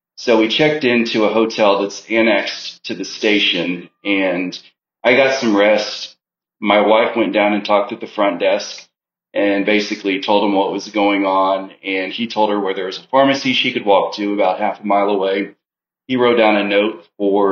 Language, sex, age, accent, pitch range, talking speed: English, male, 30-49, American, 100-110 Hz, 200 wpm